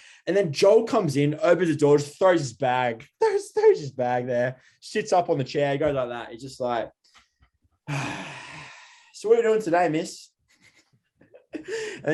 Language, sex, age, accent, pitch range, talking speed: English, male, 20-39, Australian, 120-175 Hz, 185 wpm